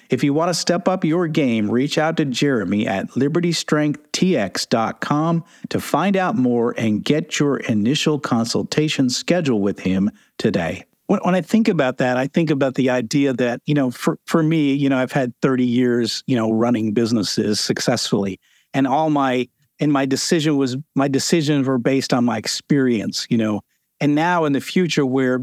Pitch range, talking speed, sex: 125-150 Hz, 180 wpm, male